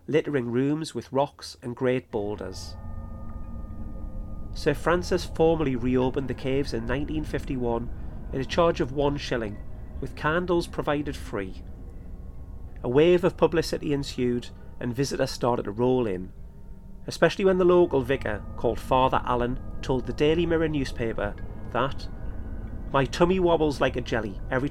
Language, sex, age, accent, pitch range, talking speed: English, male, 30-49, British, 100-145 Hz, 140 wpm